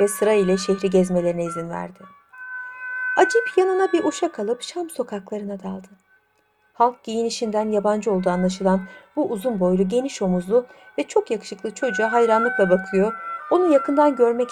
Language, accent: Turkish, native